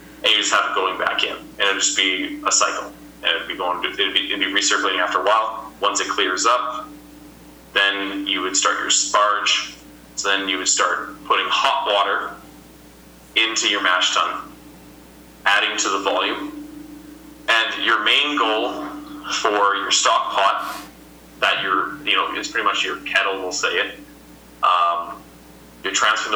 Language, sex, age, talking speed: English, male, 20-39, 175 wpm